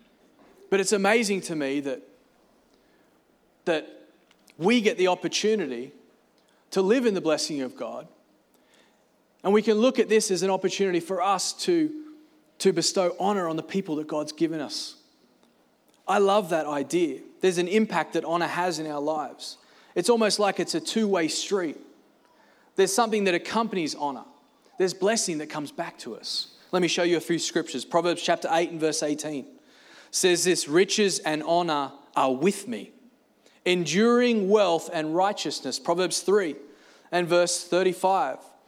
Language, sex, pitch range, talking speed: English, male, 165-210 Hz, 160 wpm